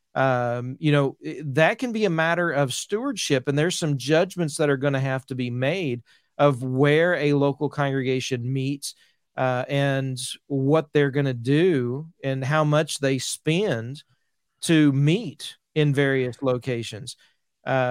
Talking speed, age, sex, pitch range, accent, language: 150 wpm, 40-59, male, 135-165 Hz, American, English